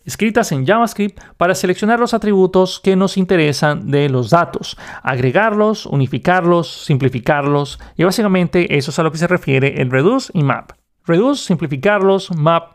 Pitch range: 145-195 Hz